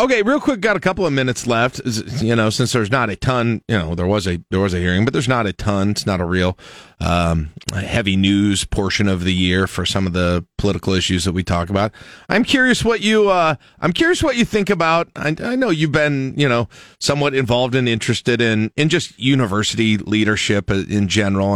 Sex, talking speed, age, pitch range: male, 225 wpm, 40-59, 100-135 Hz